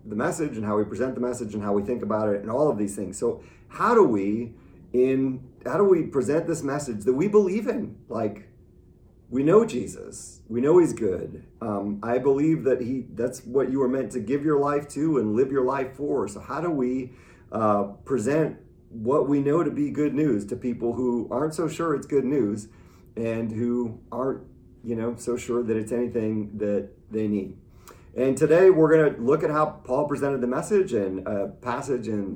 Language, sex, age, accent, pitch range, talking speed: English, male, 40-59, American, 105-135 Hz, 205 wpm